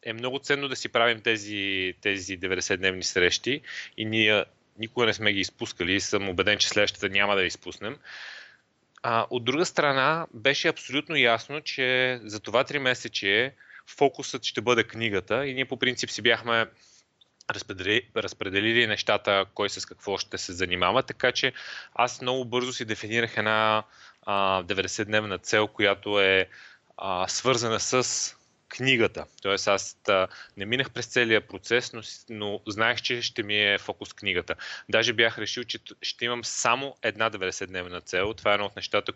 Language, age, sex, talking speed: Bulgarian, 20-39, male, 155 wpm